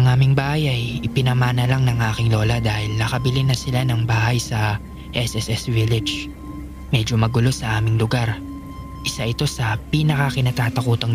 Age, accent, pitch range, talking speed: 20-39, Filipino, 115-130 Hz, 145 wpm